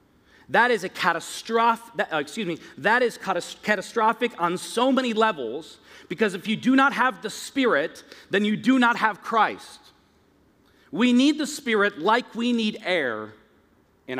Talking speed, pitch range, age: 150 wpm, 195-255 Hz, 40-59